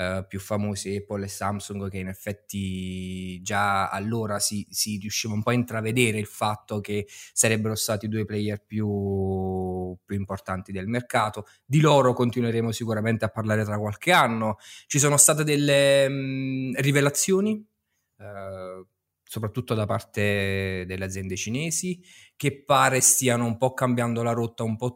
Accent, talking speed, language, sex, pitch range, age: native, 150 wpm, Italian, male, 105-125 Hz, 20-39